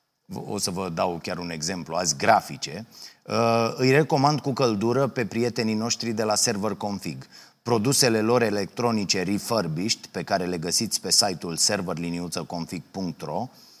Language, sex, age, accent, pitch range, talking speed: Romanian, male, 30-49, native, 105-135 Hz, 135 wpm